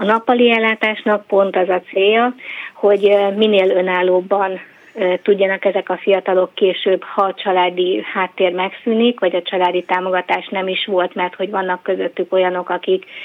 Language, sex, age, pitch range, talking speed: Hungarian, female, 30-49, 180-205 Hz, 150 wpm